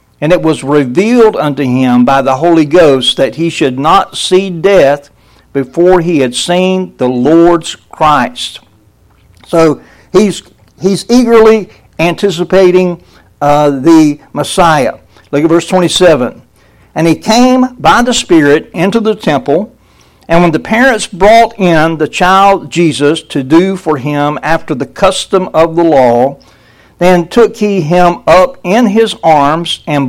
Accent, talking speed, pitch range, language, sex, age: American, 145 wpm, 145-190 Hz, English, male, 60-79